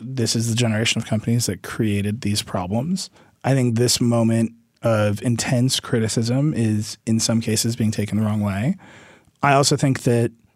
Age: 30-49